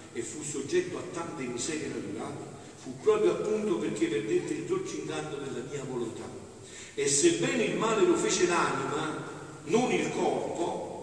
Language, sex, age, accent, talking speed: Italian, male, 50-69, native, 145 wpm